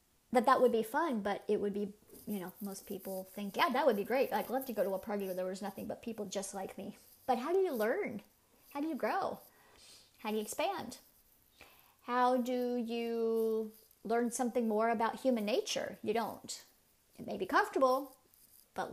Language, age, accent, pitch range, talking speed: English, 30-49, American, 205-255 Hz, 205 wpm